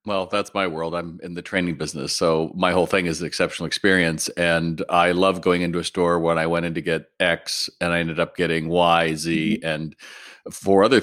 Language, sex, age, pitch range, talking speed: English, male, 40-59, 95-125 Hz, 225 wpm